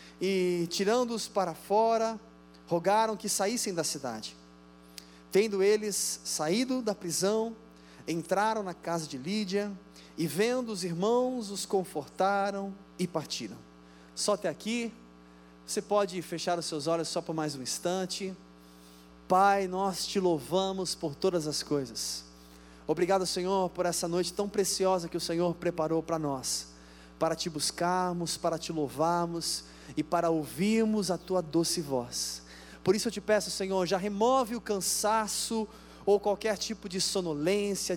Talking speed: 140 wpm